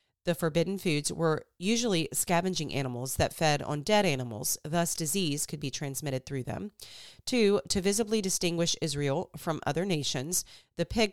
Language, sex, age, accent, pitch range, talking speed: English, female, 30-49, American, 140-180 Hz, 155 wpm